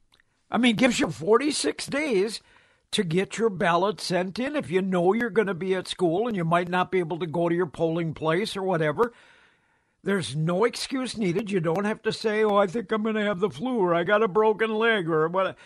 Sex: male